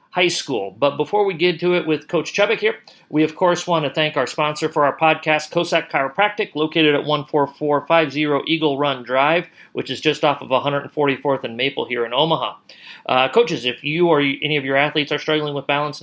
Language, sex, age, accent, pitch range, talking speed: English, male, 40-59, American, 135-160 Hz, 205 wpm